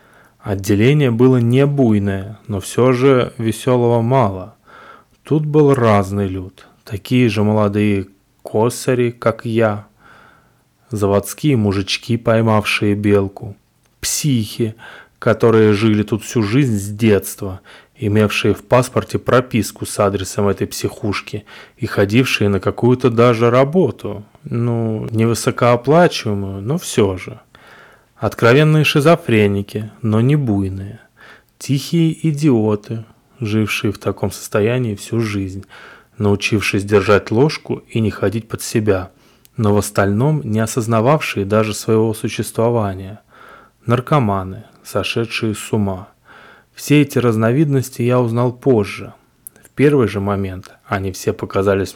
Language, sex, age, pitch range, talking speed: Russian, male, 20-39, 100-125 Hz, 110 wpm